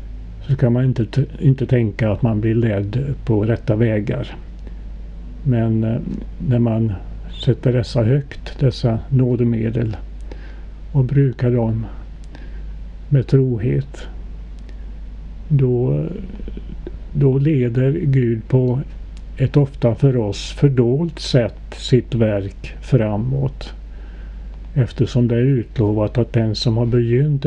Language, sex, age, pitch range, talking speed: Swedish, male, 50-69, 110-135 Hz, 105 wpm